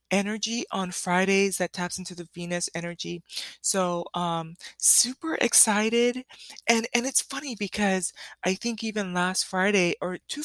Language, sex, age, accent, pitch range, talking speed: English, female, 20-39, American, 175-210 Hz, 145 wpm